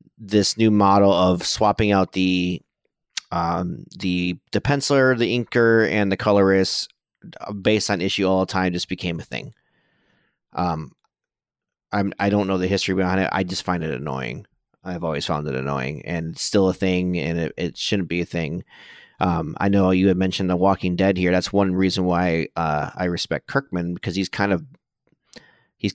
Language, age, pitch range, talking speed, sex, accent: English, 30-49, 90-110 Hz, 185 wpm, male, American